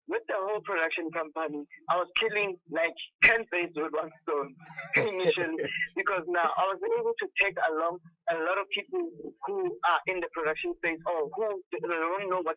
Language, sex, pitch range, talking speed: English, male, 165-200 Hz, 180 wpm